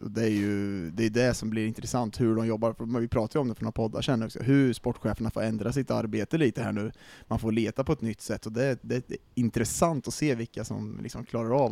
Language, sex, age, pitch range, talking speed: Swedish, male, 20-39, 110-135 Hz, 250 wpm